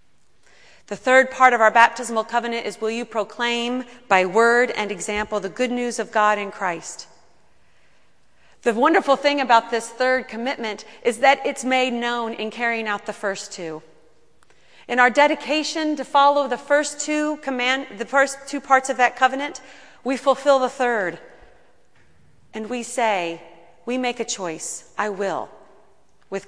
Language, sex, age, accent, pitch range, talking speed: English, female, 40-59, American, 205-255 Hz, 160 wpm